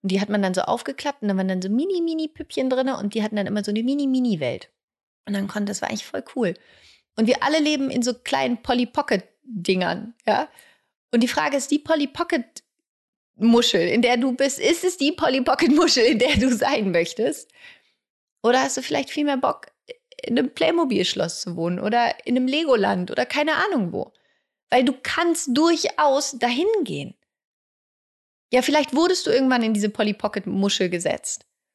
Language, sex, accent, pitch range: German, female, German, 195-260 Hz